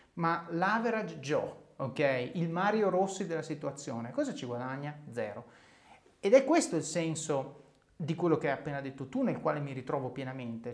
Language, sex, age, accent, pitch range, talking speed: Italian, male, 30-49, native, 140-200 Hz, 160 wpm